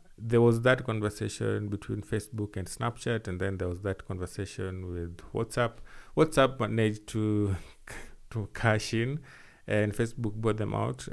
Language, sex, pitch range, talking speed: English, male, 100-120 Hz, 145 wpm